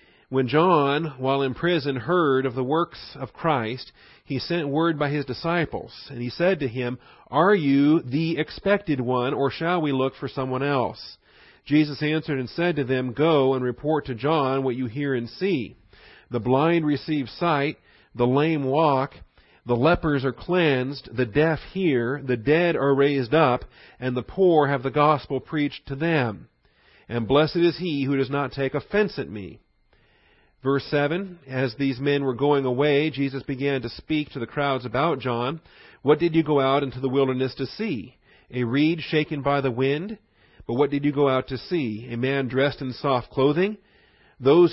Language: English